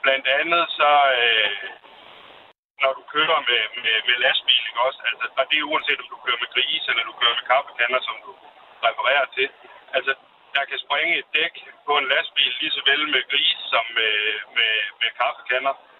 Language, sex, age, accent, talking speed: Danish, male, 60-79, native, 180 wpm